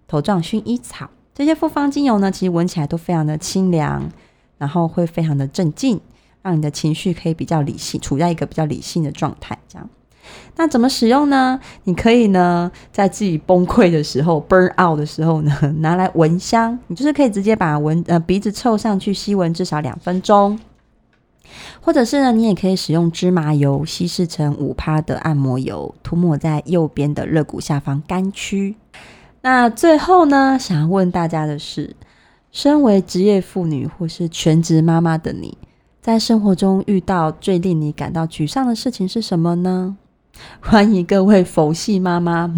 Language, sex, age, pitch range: Chinese, female, 20-39, 155-205 Hz